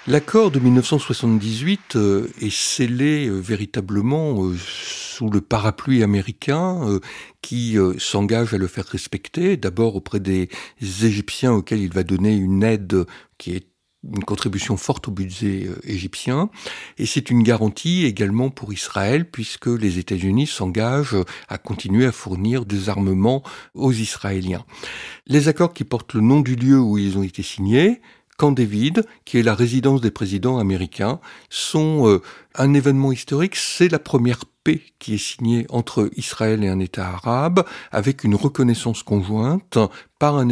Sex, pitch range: male, 105-145 Hz